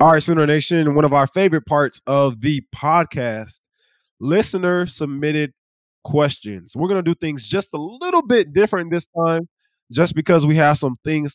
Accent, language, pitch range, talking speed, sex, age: American, English, 125-165 Hz, 170 wpm, male, 20-39